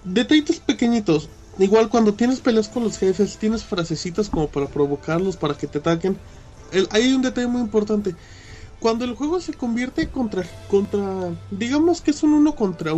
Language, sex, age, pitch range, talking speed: Spanish, male, 20-39, 160-220 Hz, 170 wpm